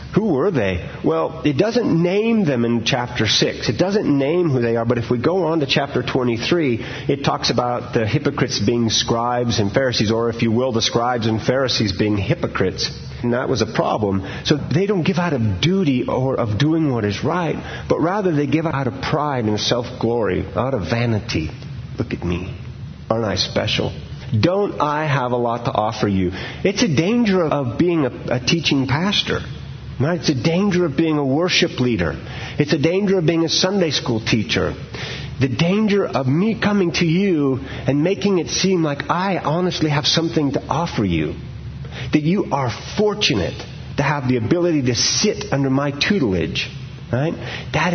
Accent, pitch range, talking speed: American, 120-165 Hz, 185 wpm